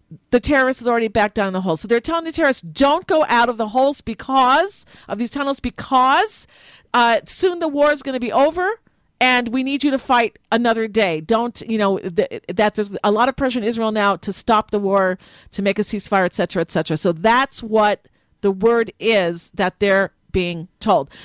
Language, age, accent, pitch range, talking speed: English, 50-69, American, 205-260 Hz, 215 wpm